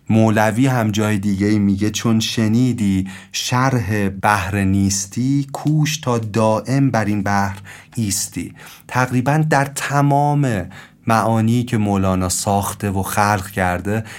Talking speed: 115 wpm